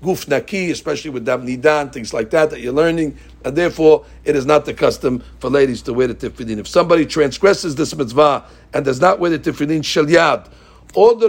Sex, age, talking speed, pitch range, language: male, 60-79, 195 wpm, 150-215 Hz, English